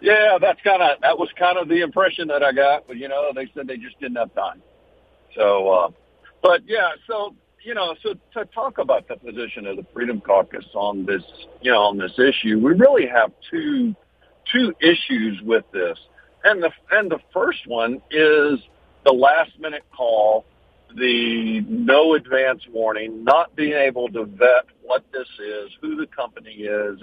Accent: American